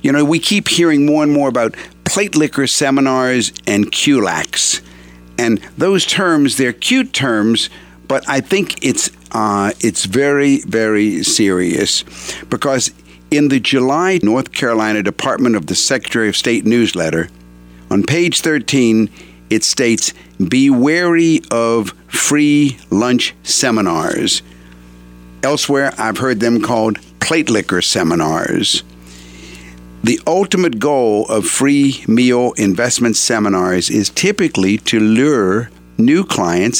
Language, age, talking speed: English, 60-79, 120 wpm